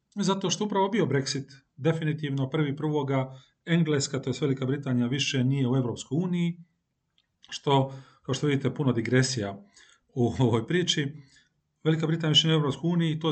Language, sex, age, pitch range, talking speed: Croatian, male, 40-59, 120-145 Hz, 160 wpm